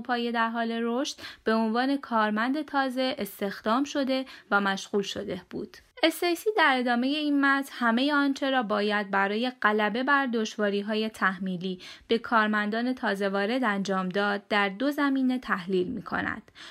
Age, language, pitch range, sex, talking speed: 20-39, Persian, 205-275 Hz, female, 145 wpm